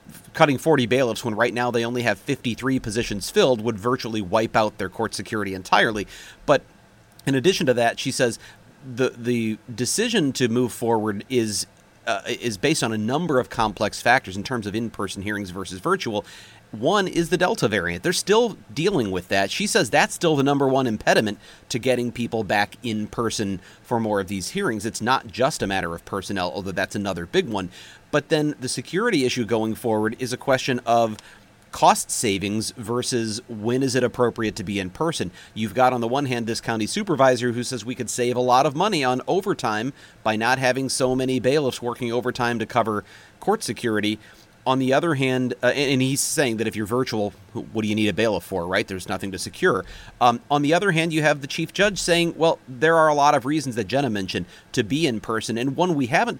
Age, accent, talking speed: 30-49, American, 215 wpm